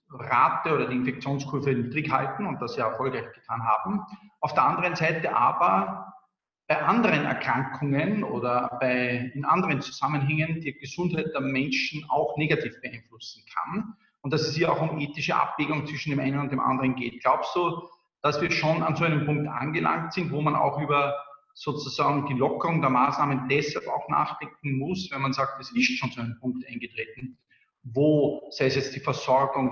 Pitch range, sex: 135-165 Hz, male